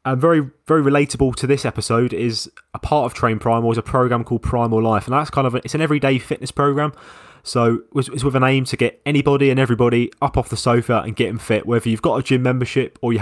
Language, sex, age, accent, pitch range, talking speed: English, male, 20-39, British, 110-130 Hz, 250 wpm